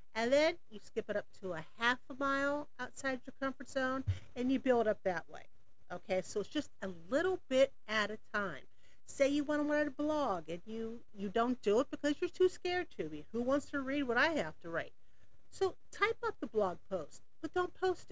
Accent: American